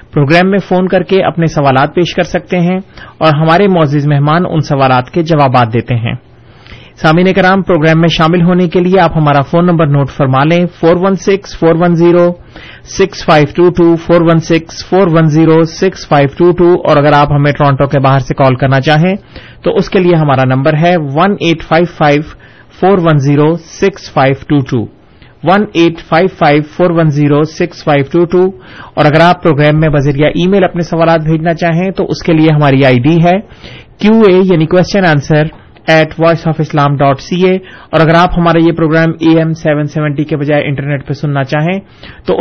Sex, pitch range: male, 145-175 Hz